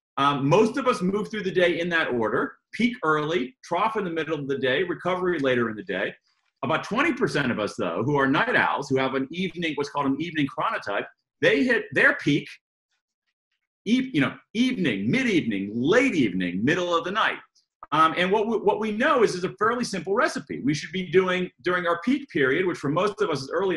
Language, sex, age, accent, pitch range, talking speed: English, male, 40-59, American, 145-190 Hz, 215 wpm